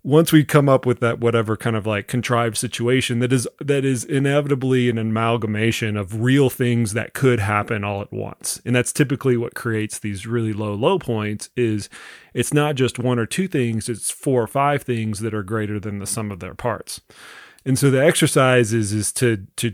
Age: 30-49